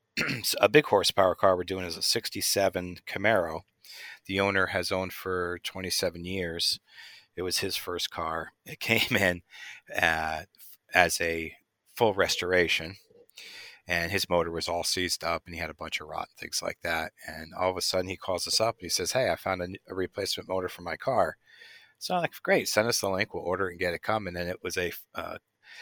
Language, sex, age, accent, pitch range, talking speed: English, male, 40-59, American, 85-105 Hz, 210 wpm